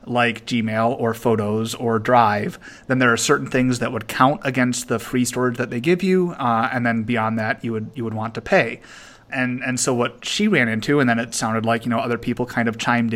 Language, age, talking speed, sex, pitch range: English, 30-49, 240 wpm, male, 115-140 Hz